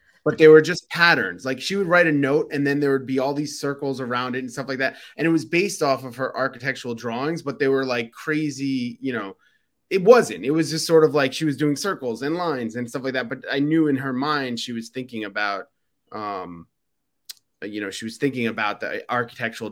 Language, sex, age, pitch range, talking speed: English, male, 30-49, 110-145 Hz, 235 wpm